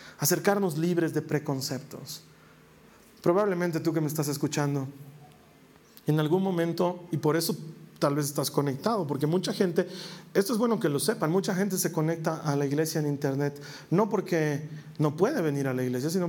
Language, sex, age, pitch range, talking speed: Spanish, male, 40-59, 135-170 Hz, 175 wpm